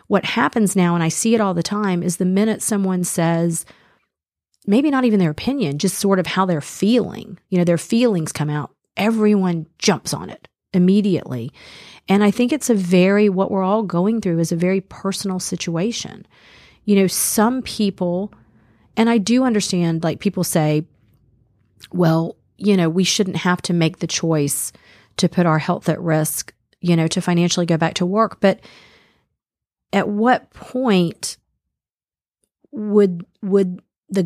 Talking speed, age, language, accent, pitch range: 165 wpm, 40-59, English, American, 165-205 Hz